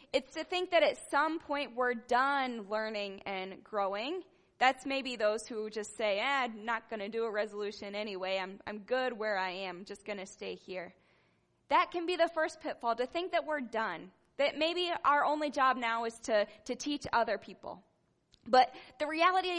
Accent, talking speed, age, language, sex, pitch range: American, 195 wpm, 10-29, English, female, 215-305 Hz